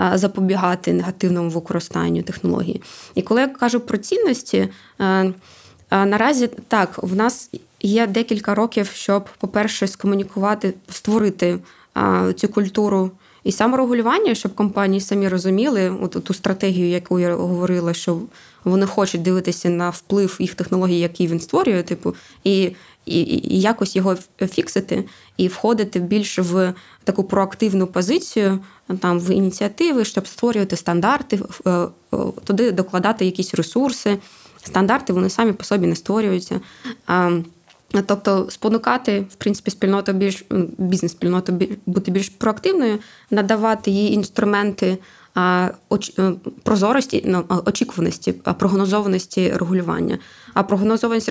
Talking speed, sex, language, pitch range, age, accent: 115 wpm, female, Ukrainian, 185-215 Hz, 20-39, native